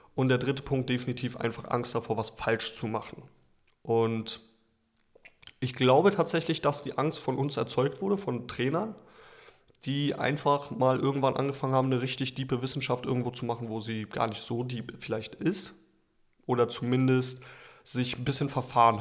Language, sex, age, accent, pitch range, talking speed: German, male, 30-49, German, 115-135 Hz, 165 wpm